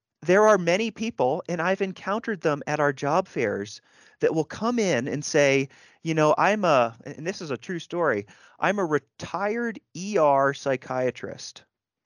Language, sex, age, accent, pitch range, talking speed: English, male, 30-49, American, 120-170 Hz, 165 wpm